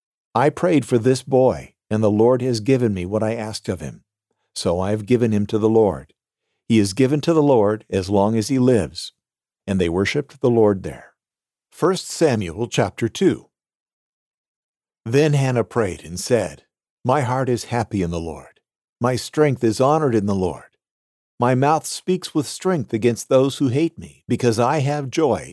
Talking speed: 185 wpm